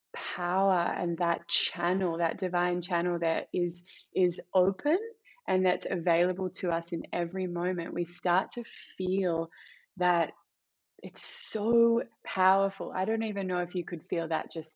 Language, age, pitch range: English, 20-39, 175-195 Hz